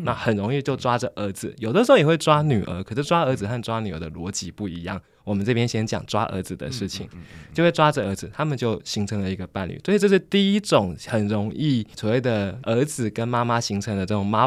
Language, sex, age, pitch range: Chinese, male, 20-39, 100-135 Hz